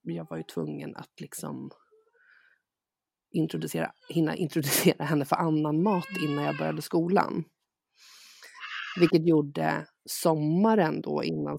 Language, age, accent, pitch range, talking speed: Swedish, 30-49, native, 150-195 Hz, 115 wpm